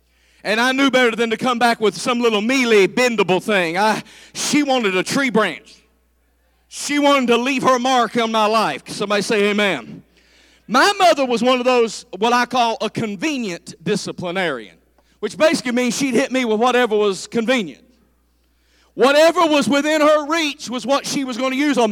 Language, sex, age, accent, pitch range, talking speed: English, male, 40-59, American, 200-285 Hz, 185 wpm